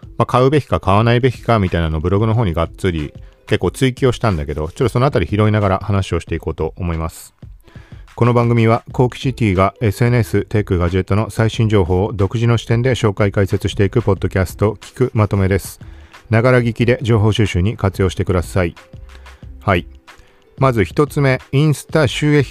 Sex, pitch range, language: male, 90-130 Hz, Japanese